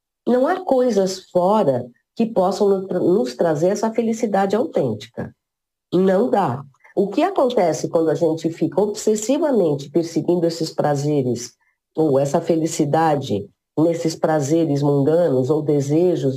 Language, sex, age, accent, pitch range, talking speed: Portuguese, female, 40-59, Brazilian, 140-205 Hz, 115 wpm